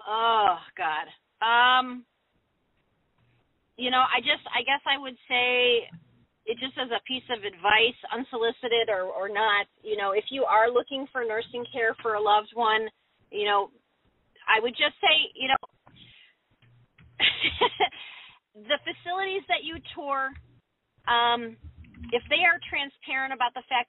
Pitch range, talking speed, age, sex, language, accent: 230-280 Hz, 145 wpm, 40-59, female, English, American